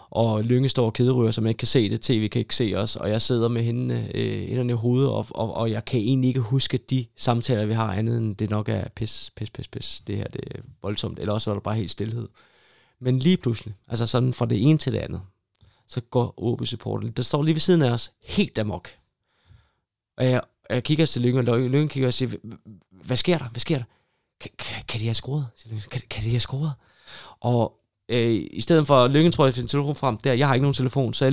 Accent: native